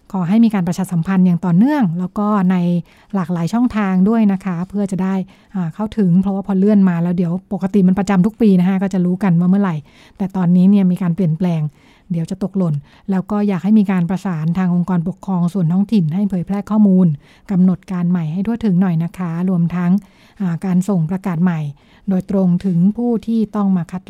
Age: 60-79